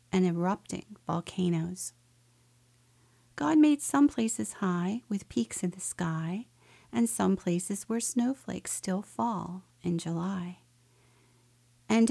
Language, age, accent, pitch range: English, 50-69, American, 125-195 Hz